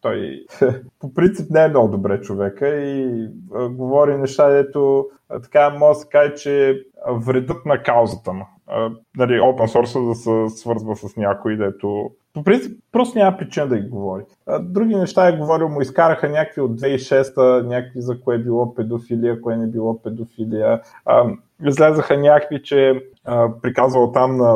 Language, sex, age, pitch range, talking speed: Bulgarian, male, 20-39, 110-140 Hz, 165 wpm